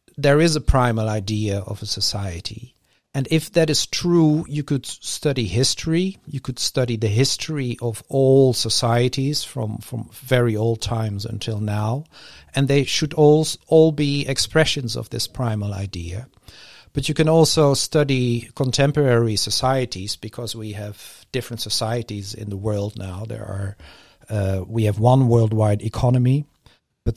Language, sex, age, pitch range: English, male, 50-69, 110-140 Hz